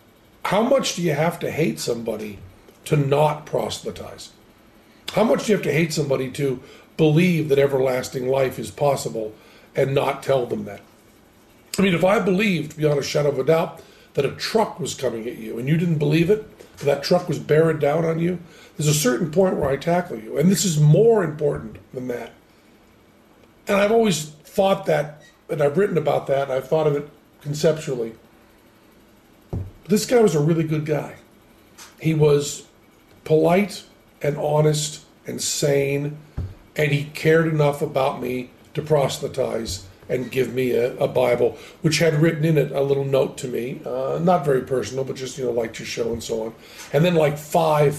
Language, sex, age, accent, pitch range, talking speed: English, male, 40-59, American, 125-160 Hz, 185 wpm